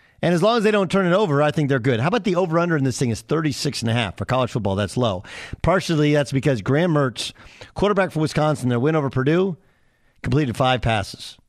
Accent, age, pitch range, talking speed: American, 40-59, 110-145 Hz, 240 wpm